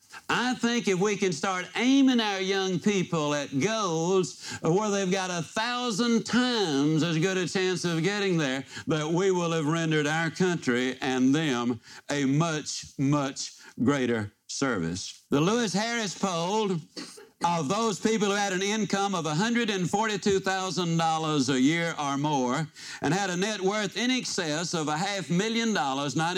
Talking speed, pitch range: 155 wpm, 145-200 Hz